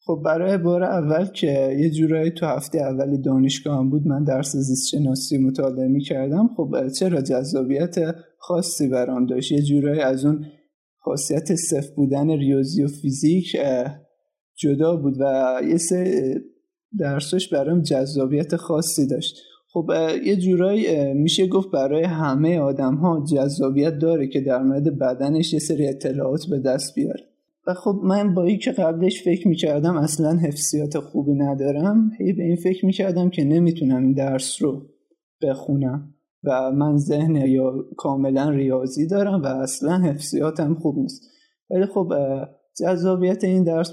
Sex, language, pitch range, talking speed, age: male, Persian, 135-175 Hz, 145 wpm, 20-39